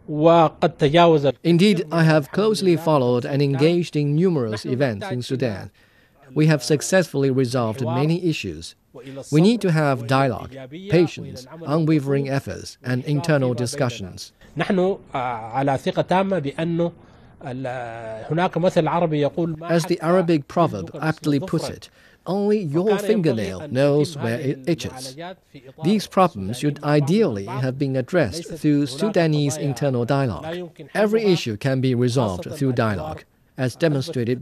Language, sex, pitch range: English, male, 125-165 Hz